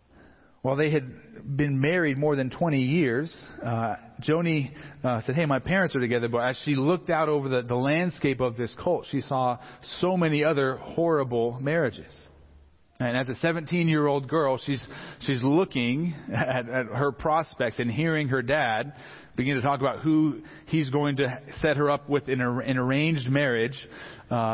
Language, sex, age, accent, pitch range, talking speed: English, male, 40-59, American, 125-150 Hz, 170 wpm